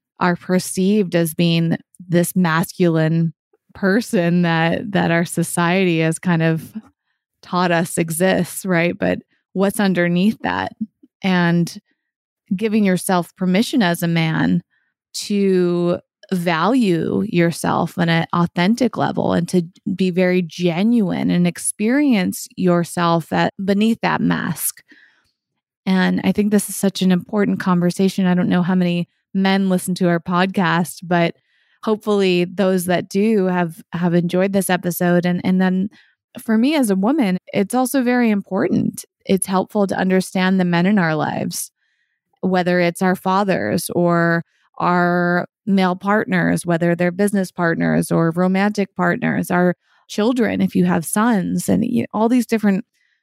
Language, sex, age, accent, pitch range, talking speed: English, female, 20-39, American, 175-205 Hz, 140 wpm